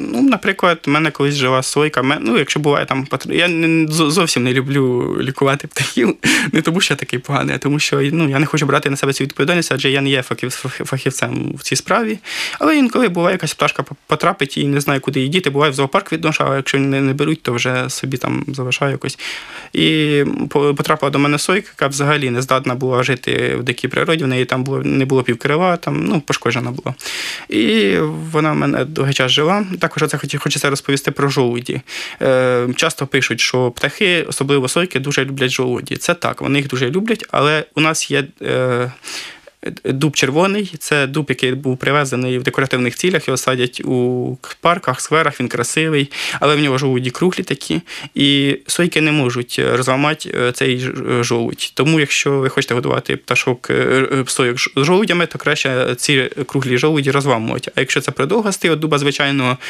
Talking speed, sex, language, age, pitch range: 175 wpm, male, Ukrainian, 20-39, 130-155 Hz